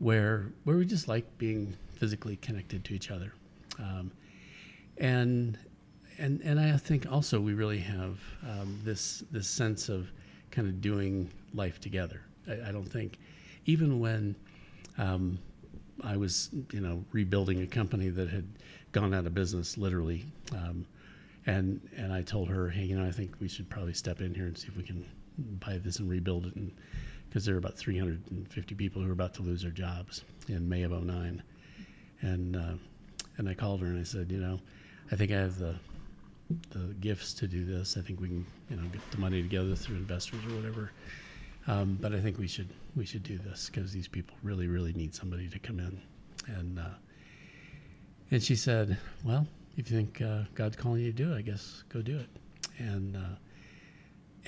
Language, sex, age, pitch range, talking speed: English, male, 50-69, 90-110 Hz, 195 wpm